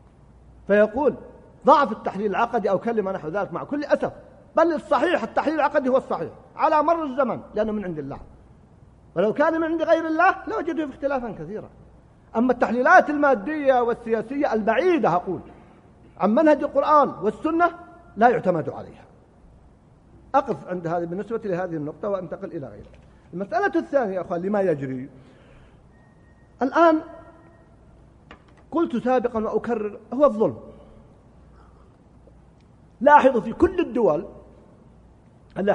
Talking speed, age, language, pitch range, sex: 120 wpm, 50-69, Arabic, 205-300 Hz, male